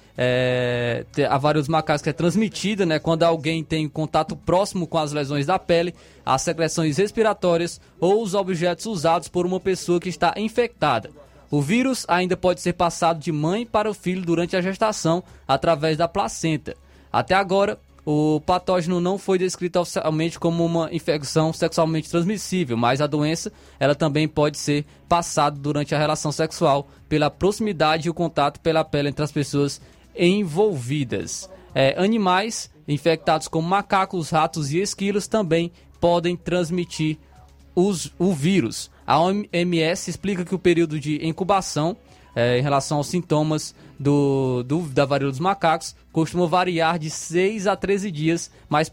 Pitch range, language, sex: 150-185 Hz, Portuguese, male